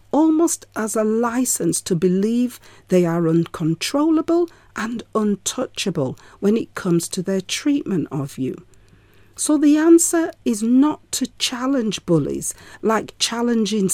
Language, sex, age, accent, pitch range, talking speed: English, female, 40-59, British, 170-275 Hz, 125 wpm